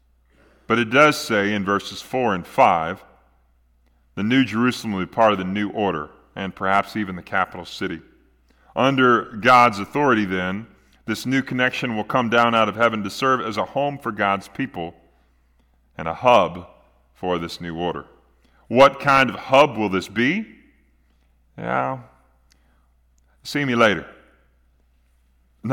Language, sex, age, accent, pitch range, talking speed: English, male, 40-59, American, 90-120 Hz, 150 wpm